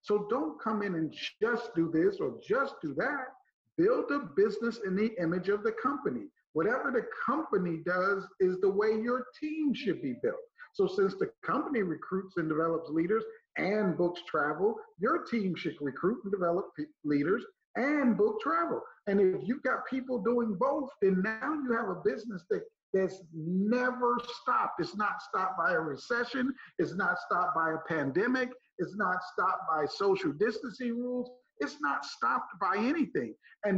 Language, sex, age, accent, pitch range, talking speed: English, male, 50-69, American, 195-300 Hz, 170 wpm